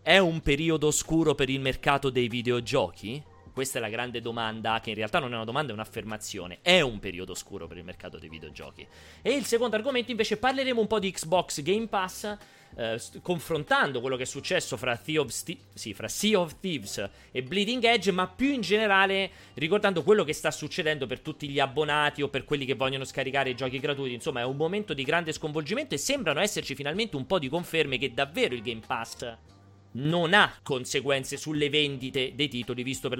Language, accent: Italian, native